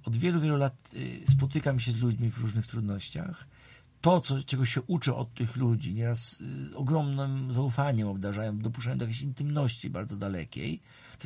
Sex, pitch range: male, 95-135 Hz